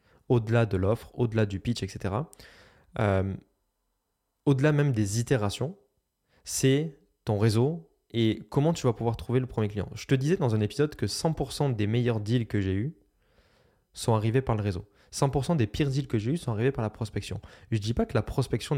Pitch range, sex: 105-130 Hz, male